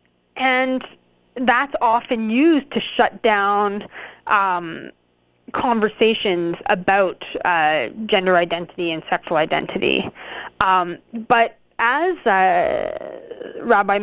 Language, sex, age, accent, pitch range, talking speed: English, female, 20-39, American, 175-245 Hz, 85 wpm